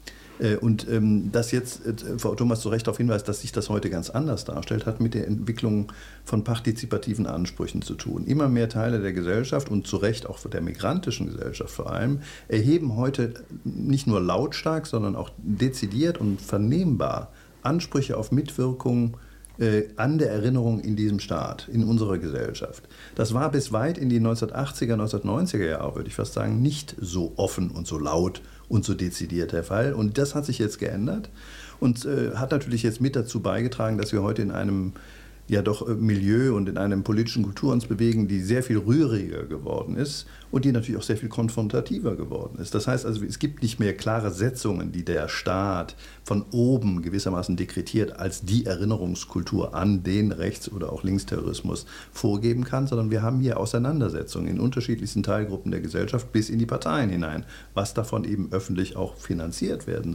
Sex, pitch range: male, 100-120 Hz